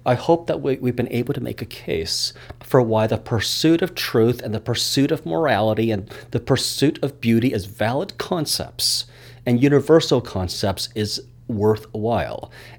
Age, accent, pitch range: 40-59, American, 105-130 Hz